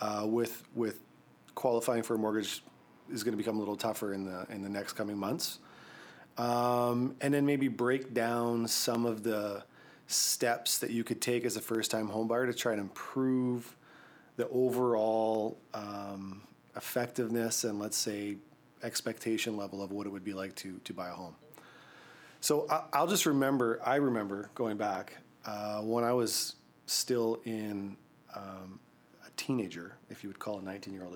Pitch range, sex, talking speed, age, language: 105-125 Hz, male, 170 wpm, 30-49, English